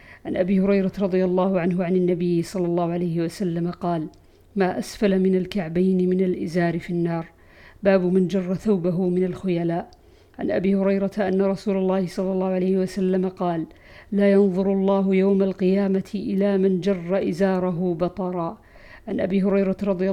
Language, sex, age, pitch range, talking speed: Arabic, female, 50-69, 185-205 Hz, 155 wpm